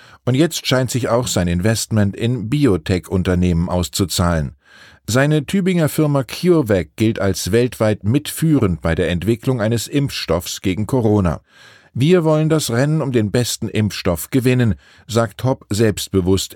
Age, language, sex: 50-69, German, male